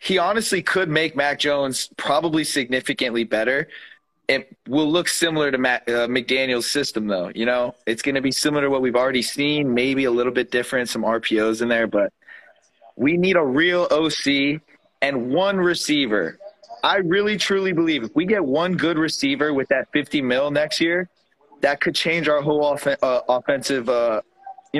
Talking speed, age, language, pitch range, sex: 175 wpm, 20-39, English, 140-190 Hz, male